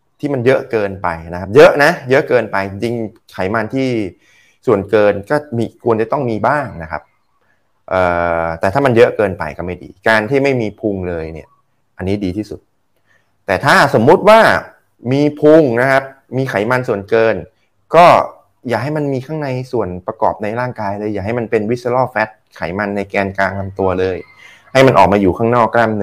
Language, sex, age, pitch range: Thai, male, 20-39, 95-125 Hz